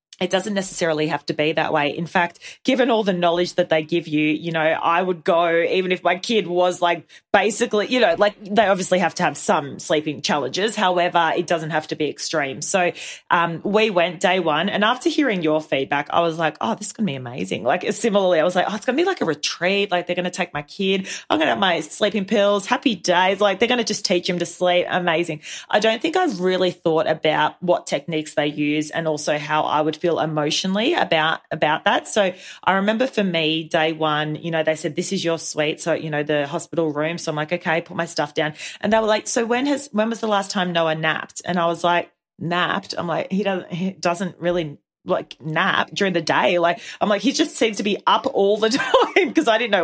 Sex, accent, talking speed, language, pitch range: female, Australian, 245 wpm, English, 160-205 Hz